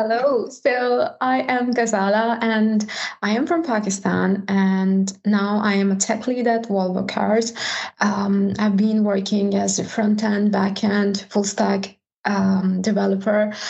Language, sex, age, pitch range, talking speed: English, female, 20-39, 195-220 Hz, 135 wpm